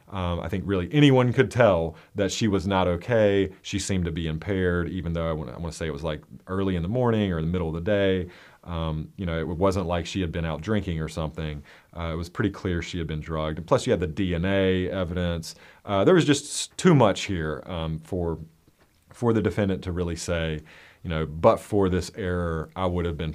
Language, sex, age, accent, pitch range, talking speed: English, male, 30-49, American, 80-110 Hz, 235 wpm